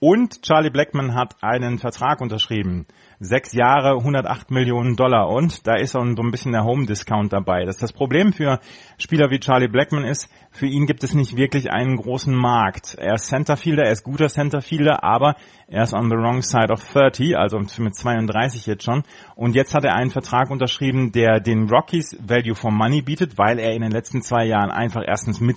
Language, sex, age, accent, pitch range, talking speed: German, male, 30-49, German, 115-135 Hz, 195 wpm